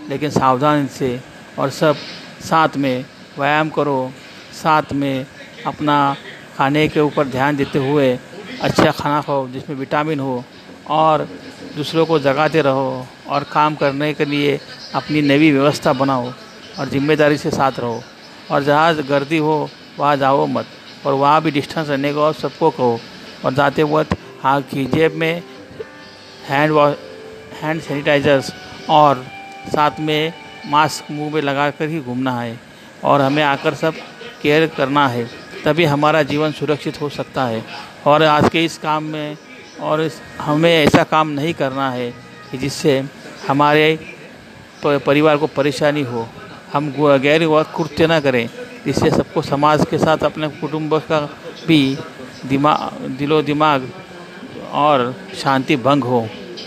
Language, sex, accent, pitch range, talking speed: Hindi, male, native, 135-155 Hz, 145 wpm